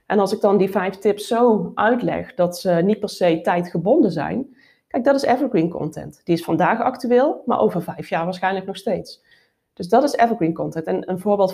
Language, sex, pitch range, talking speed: Dutch, female, 170-230 Hz, 210 wpm